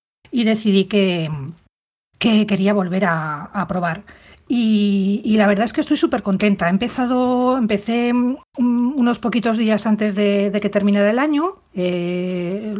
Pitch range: 200-245 Hz